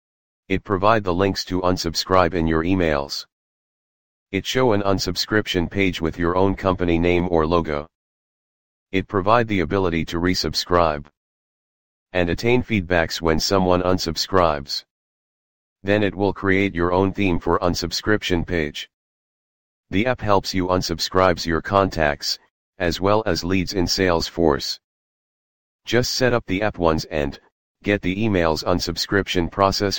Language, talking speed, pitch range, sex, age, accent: English, 135 wpm, 85-100 Hz, male, 40-59, American